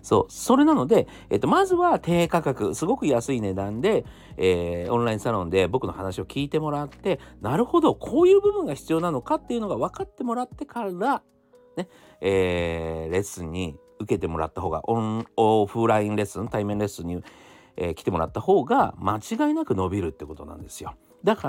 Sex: male